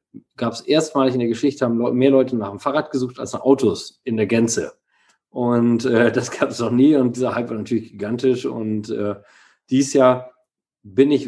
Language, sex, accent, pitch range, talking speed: German, male, German, 115-135 Hz, 205 wpm